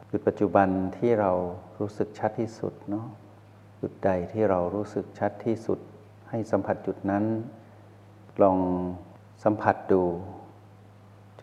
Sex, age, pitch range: male, 60-79, 95-110 Hz